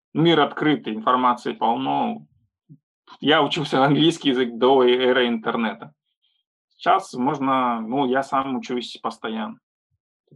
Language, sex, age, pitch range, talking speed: Russian, male, 20-39, 120-145 Hz, 105 wpm